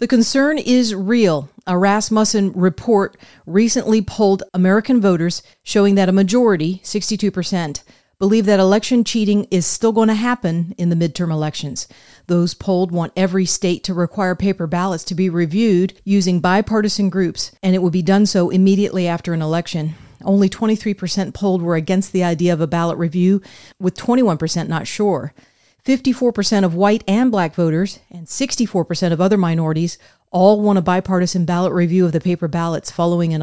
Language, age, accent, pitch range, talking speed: English, 40-59, American, 175-210 Hz, 165 wpm